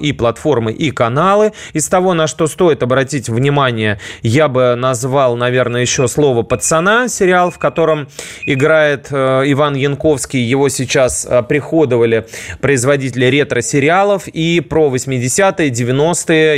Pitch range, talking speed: 110-150 Hz, 120 wpm